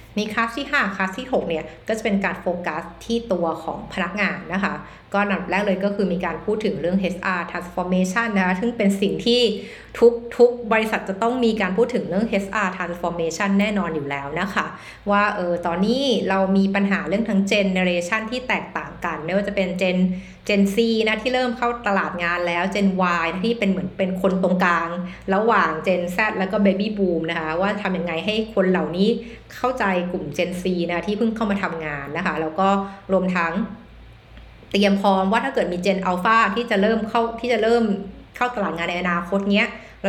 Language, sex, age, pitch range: Thai, female, 60-79, 175-215 Hz